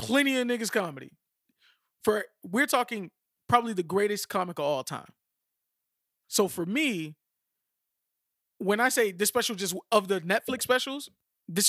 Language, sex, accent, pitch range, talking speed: English, male, American, 175-220 Hz, 145 wpm